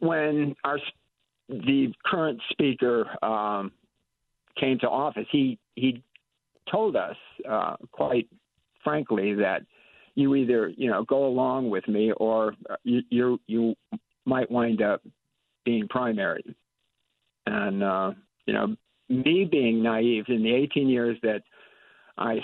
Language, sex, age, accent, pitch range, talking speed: English, male, 50-69, American, 110-130 Hz, 125 wpm